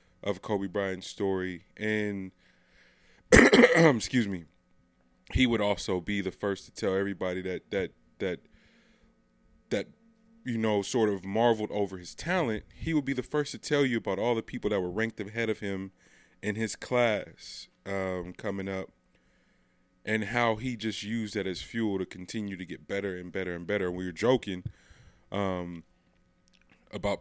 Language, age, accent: English, 20-39, American